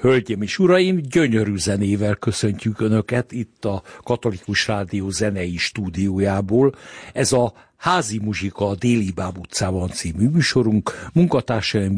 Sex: male